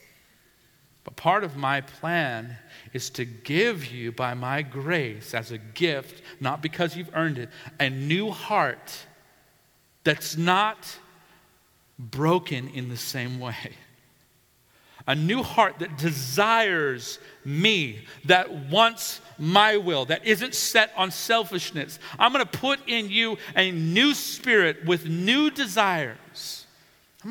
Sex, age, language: male, 40-59, English